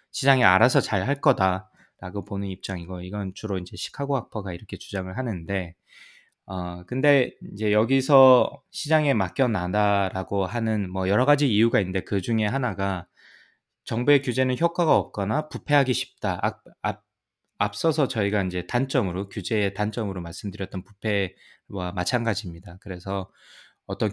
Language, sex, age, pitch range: Korean, male, 20-39, 95-125 Hz